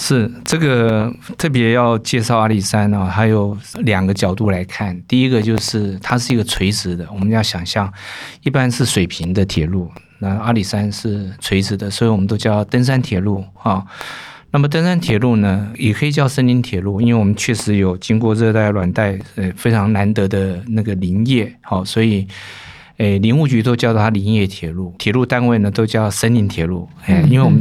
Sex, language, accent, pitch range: male, Chinese, native, 100-125 Hz